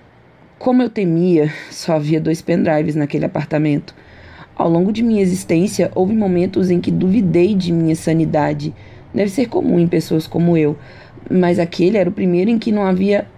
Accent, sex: Brazilian, female